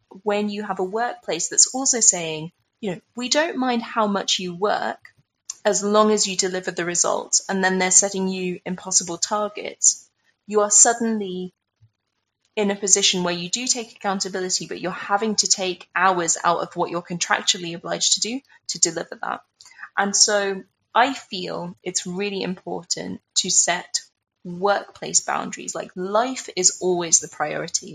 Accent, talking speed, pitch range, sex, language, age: British, 165 wpm, 175-210 Hz, female, English, 20-39